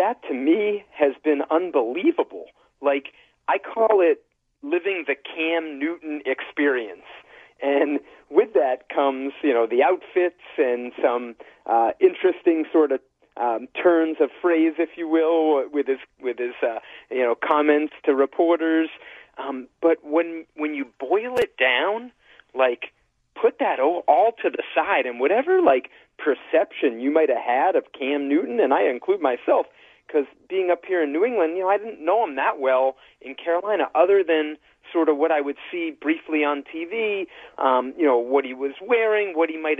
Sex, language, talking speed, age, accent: male, English, 170 wpm, 40-59, American